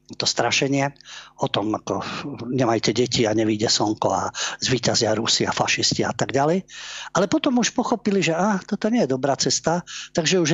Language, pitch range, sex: Slovak, 125-150 Hz, male